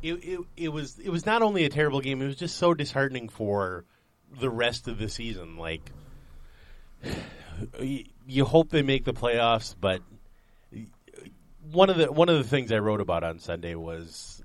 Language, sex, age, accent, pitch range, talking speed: English, male, 30-49, American, 95-130 Hz, 180 wpm